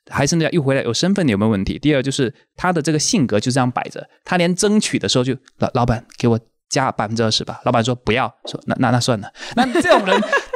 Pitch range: 120-160 Hz